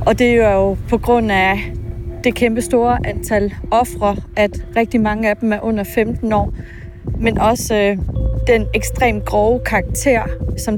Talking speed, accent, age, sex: 155 wpm, native, 30-49, female